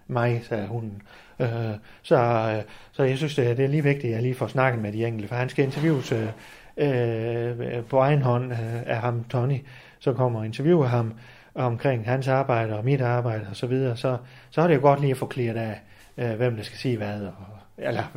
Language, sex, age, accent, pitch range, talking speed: Danish, male, 30-49, native, 120-150 Hz, 205 wpm